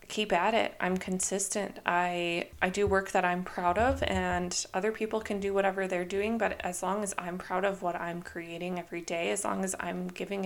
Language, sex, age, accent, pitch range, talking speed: English, female, 20-39, American, 180-210 Hz, 220 wpm